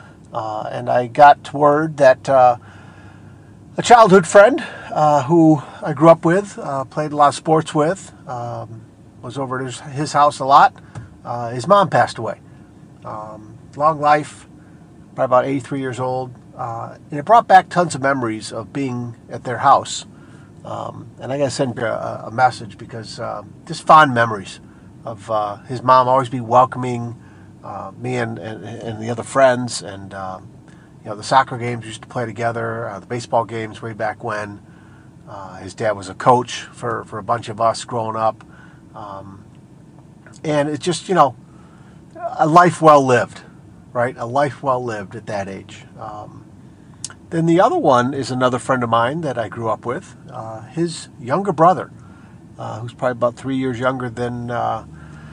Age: 50-69